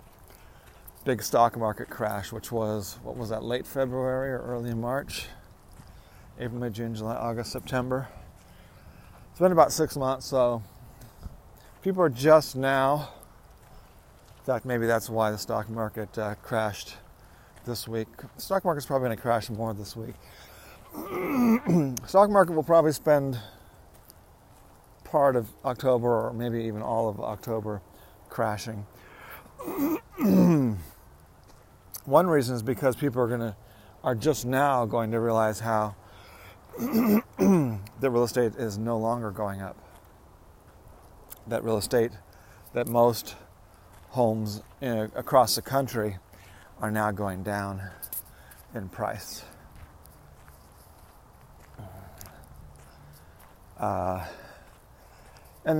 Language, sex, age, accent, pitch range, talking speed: English, male, 40-59, American, 95-125 Hz, 115 wpm